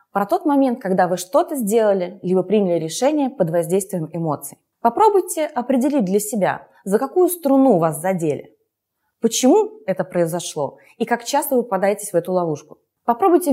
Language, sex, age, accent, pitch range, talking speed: Russian, female, 20-39, native, 180-260 Hz, 150 wpm